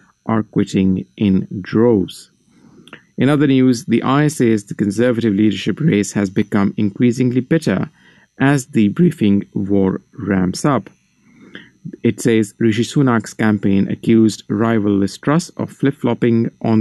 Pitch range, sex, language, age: 100-125 Hz, male, English, 50-69